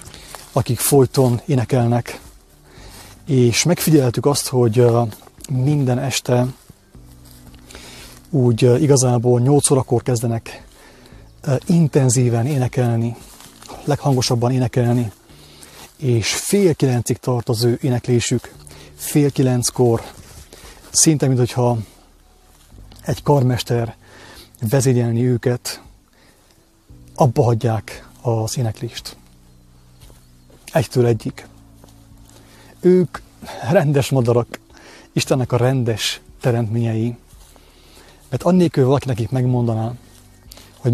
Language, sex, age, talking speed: English, male, 30-49, 75 wpm